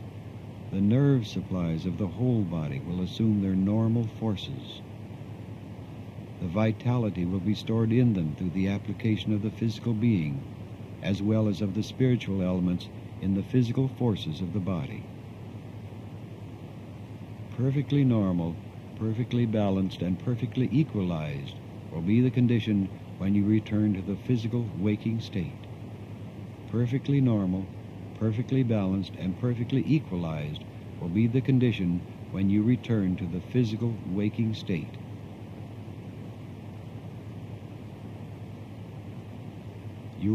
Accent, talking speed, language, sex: American, 115 wpm, English, male